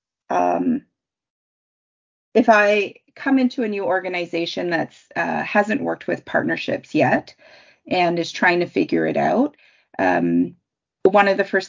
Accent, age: American, 30-49